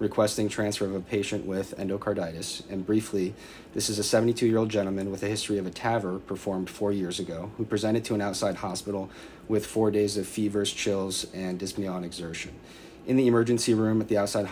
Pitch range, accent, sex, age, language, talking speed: 95-105 Hz, American, male, 30-49, English, 195 wpm